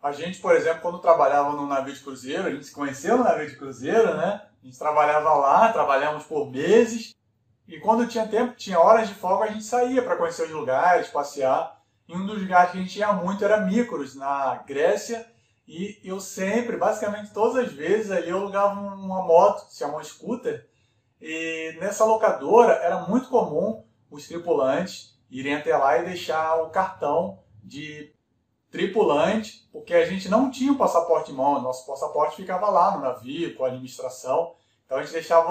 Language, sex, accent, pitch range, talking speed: Portuguese, male, Brazilian, 150-220 Hz, 190 wpm